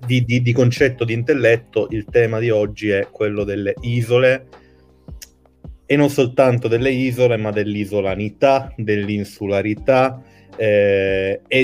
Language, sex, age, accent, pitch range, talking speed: Italian, male, 30-49, native, 105-135 Hz, 120 wpm